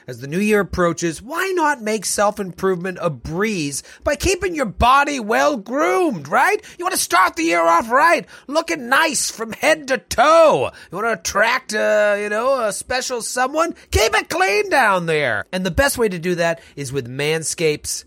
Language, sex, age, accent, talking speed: English, male, 30-49, American, 185 wpm